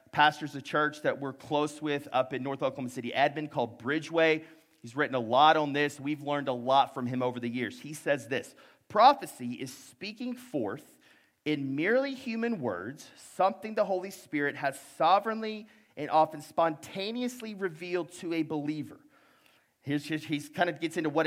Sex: male